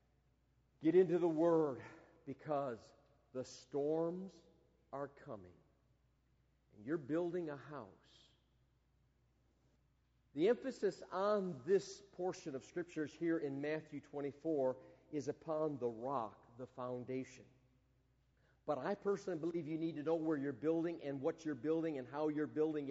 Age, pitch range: 50-69, 155-210 Hz